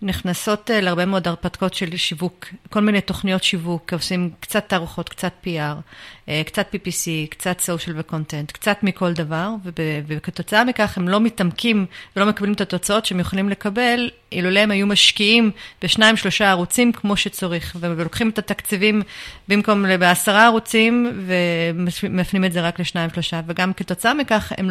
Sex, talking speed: female, 140 wpm